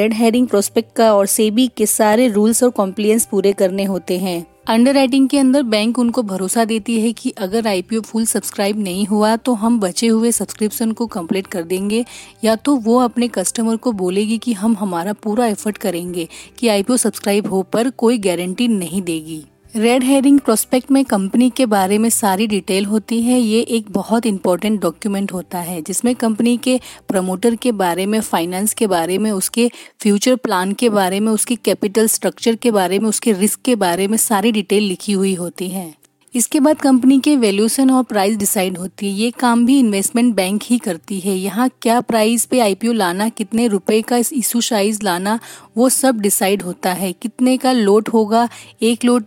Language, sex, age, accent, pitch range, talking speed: Hindi, female, 30-49, native, 195-240 Hz, 190 wpm